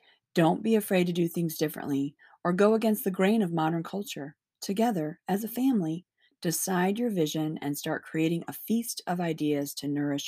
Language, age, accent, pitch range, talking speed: English, 30-49, American, 150-190 Hz, 180 wpm